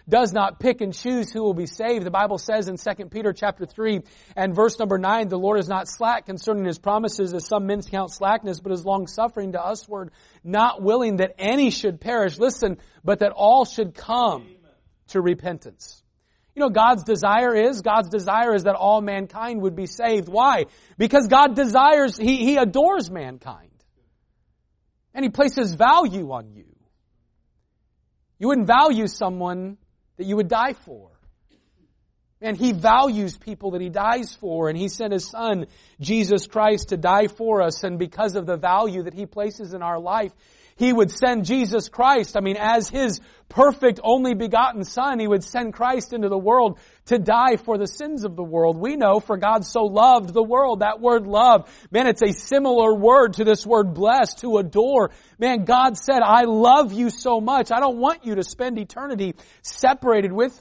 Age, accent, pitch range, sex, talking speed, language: 40-59, American, 195-240 Hz, male, 185 wpm, English